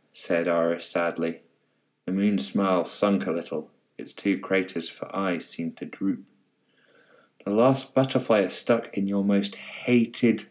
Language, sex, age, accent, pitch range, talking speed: English, male, 30-49, British, 95-125 Hz, 150 wpm